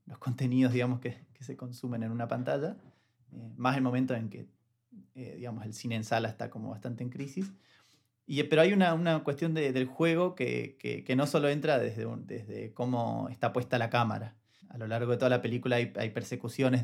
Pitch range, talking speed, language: 115-130 Hz, 215 wpm, Spanish